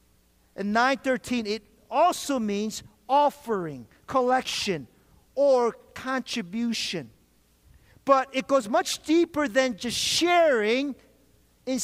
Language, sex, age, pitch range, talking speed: English, male, 50-69, 205-295 Hz, 80 wpm